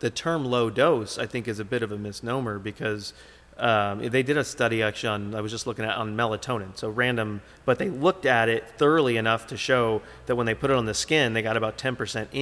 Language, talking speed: English, 240 wpm